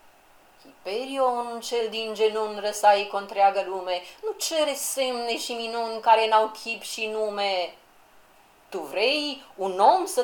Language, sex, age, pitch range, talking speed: Romanian, female, 40-59, 190-275 Hz, 130 wpm